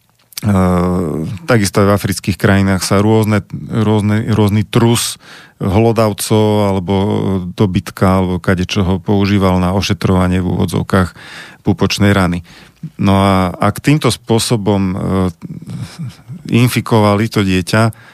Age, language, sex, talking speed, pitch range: 40-59, Slovak, male, 110 wpm, 95-115 Hz